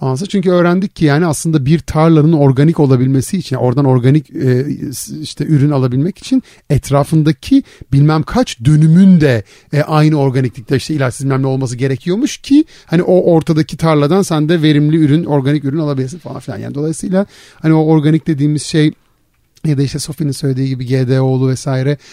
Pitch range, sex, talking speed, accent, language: 135-175 Hz, male, 150 wpm, native, Turkish